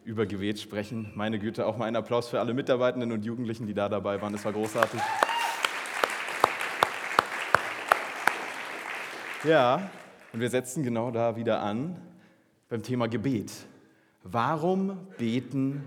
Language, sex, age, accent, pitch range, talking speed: German, male, 30-49, German, 110-155 Hz, 130 wpm